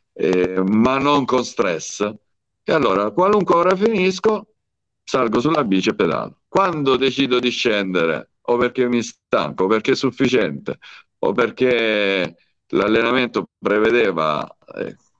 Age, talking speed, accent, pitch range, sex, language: 50-69, 125 wpm, native, 100-130 Hz, male, Italian